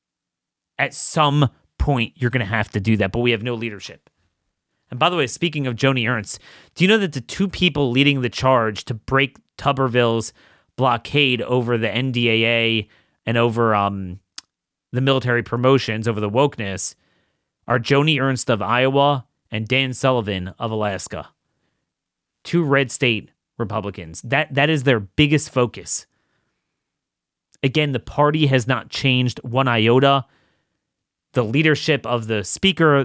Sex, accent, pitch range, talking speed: male, American, 110-140 Hz, 150 wpm